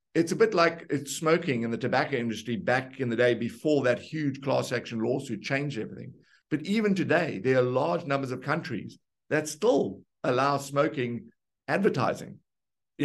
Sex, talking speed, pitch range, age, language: male, 170 wpm, 125-150 Hz, 60-79, English